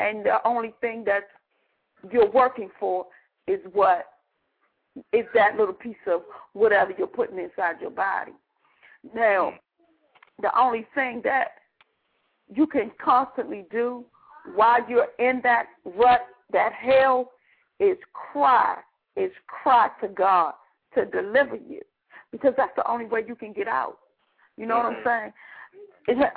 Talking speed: 135 wpm